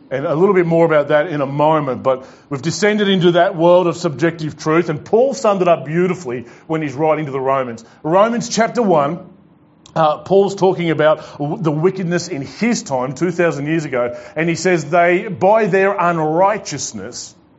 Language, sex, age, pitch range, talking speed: English, male, 40-59, 135-175 Hz, 180 wpm